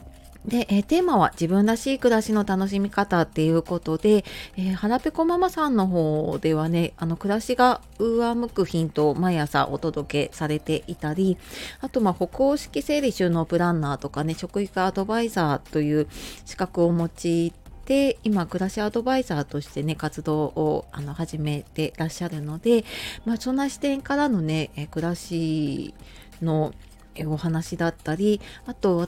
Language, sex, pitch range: Japanese, female, 155-230 Hz